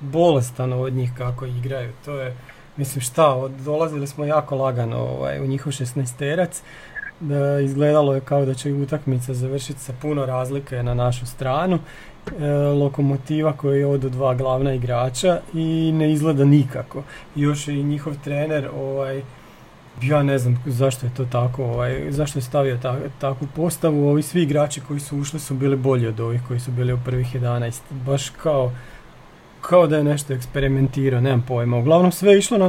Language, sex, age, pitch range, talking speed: Croatian, male, 40-59, 130-150 Hz, 175 wpm